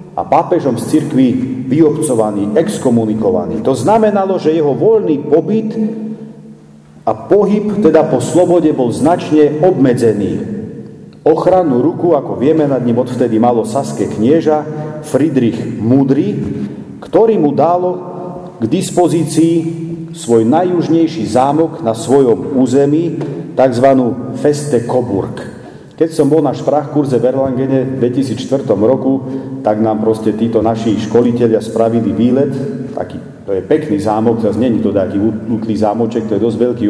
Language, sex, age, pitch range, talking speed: Slovak, male, 40-59, 110-155 Hz, 130 wpm